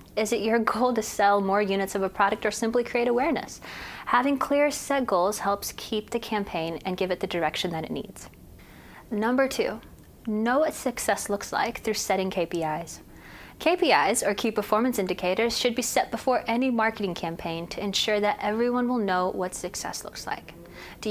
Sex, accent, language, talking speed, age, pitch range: female, American, English, 180 wpm, 20-39, 180-235 Hz